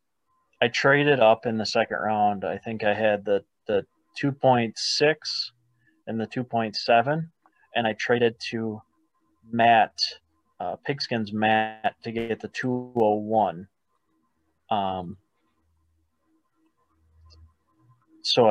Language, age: English, 30-49